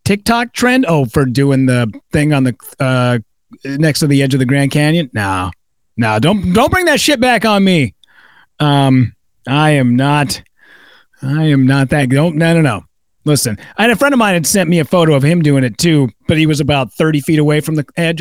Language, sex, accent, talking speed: English, male, American, 220 wpm